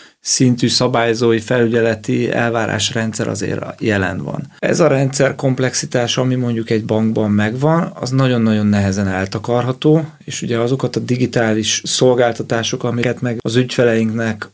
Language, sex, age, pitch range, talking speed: Hungarian, male, 30-49, 115-130 Hz, 125 wpm